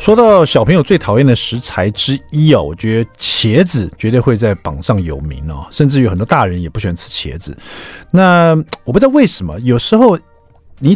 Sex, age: male, 50-69